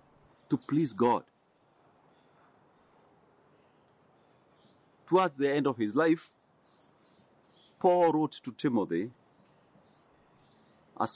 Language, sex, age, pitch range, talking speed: English, male, 50-69, 155-195 Hz, 75 wpm